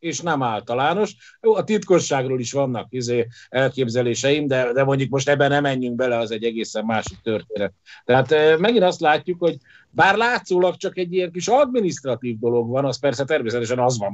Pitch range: 120-155 Hz